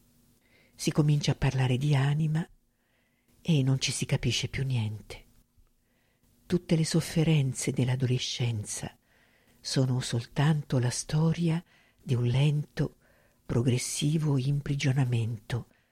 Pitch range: 120-145 Hz